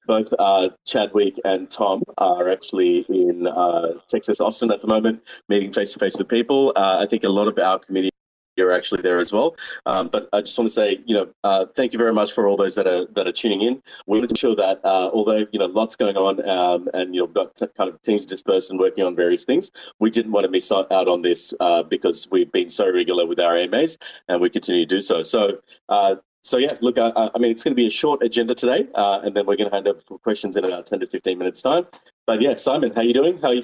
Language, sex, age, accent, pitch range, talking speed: English, male, 30-49, Australian, 95-125 Hz, 260 wpm